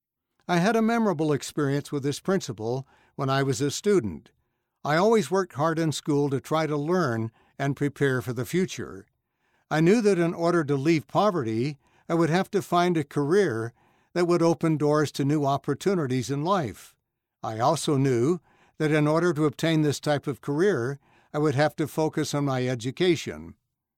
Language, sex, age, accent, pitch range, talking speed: English, male, 60-79, American, 140-175 Hz, 180 wpm